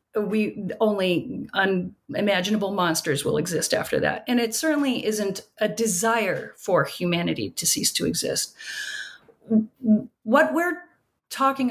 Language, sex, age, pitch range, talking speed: English, female, 40-59, 195-245 Hz, 120 wpm